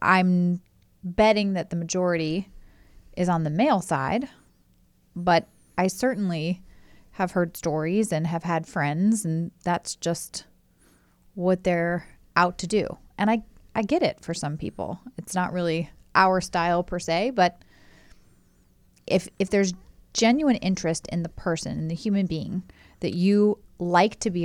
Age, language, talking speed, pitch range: 30-49, English, 150 wpm, 165-195 Hz